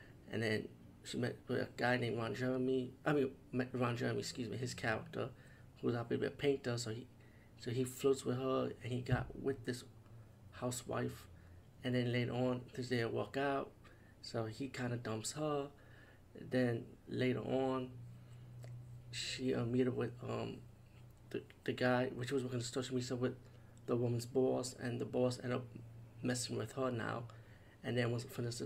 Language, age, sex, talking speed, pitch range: English, 30-49, male, 180 wpm, 115-130 Hz